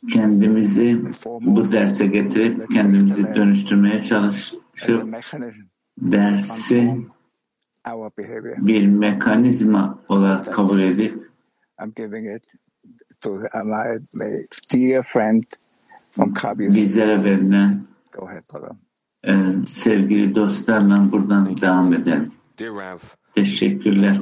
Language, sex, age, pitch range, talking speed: English, male, 60-79, 100-110 Hz, 50 wpm